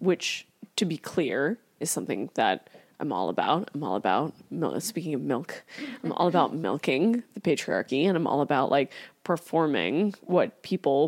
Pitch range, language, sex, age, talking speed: 165-195 Hz, English, female, 20-39, 160 wpm